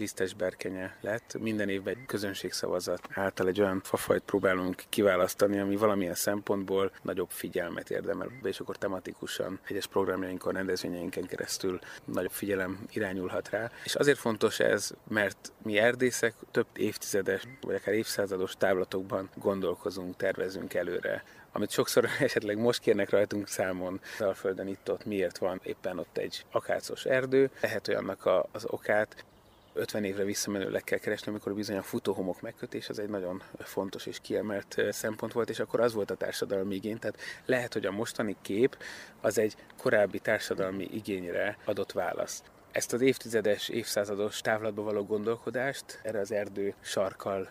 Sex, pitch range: male, 95-110 Hz